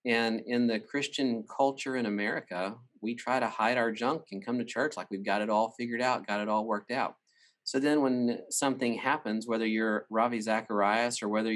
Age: 40-59